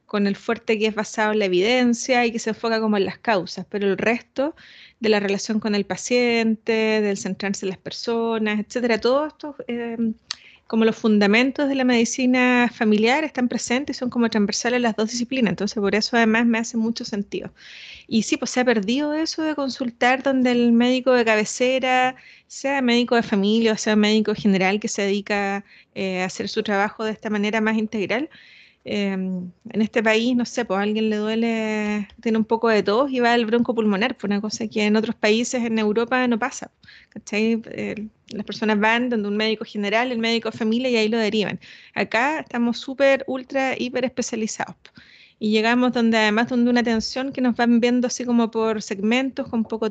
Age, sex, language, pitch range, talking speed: 30-49, female, Spanish, 215-245 Hz, 200 wpm